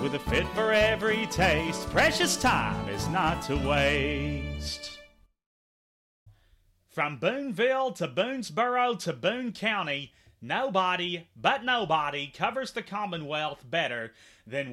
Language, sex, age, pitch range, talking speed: English, male, 30-49, 130-195 Hz, 110 wpm